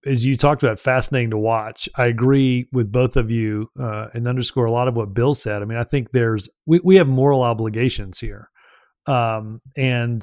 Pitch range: 115-135 Hz